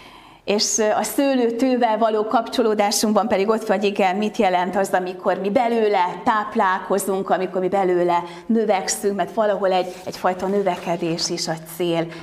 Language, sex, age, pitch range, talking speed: Hungarian, female, 30-49, 190-230 Hz, 135 wpm